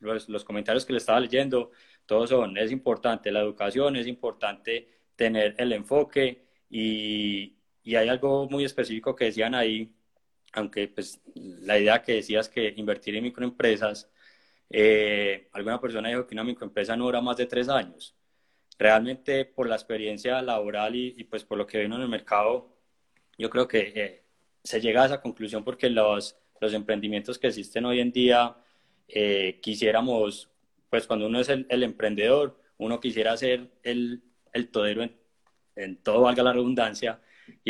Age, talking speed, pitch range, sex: 20-39, 165 wpm, 110-125 Hz, male